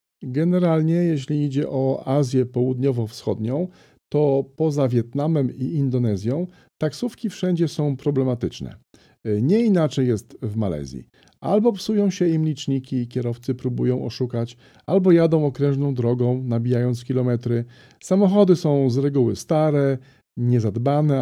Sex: male